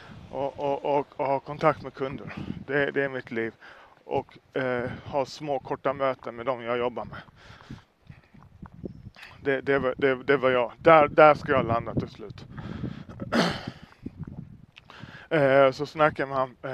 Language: Swedish